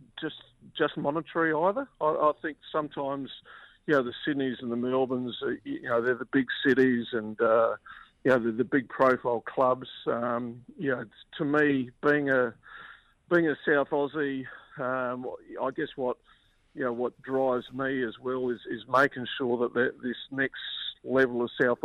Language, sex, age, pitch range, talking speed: English, male, 50-69, 120-140 Hz, 170 wpm